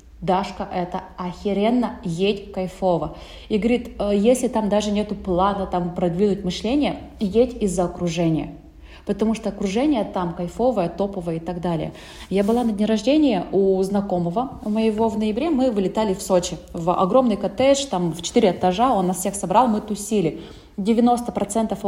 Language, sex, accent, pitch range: Russian, female, native, 185-220 Hz